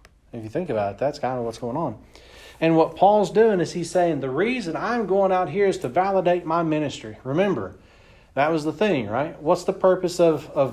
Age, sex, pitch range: 40-59, male, 125-160 Hz